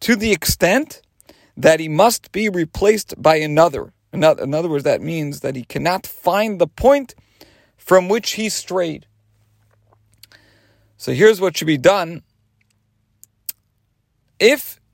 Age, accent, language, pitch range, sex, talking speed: 40-59, American, English, 110-170 Hz, male, 130 wpm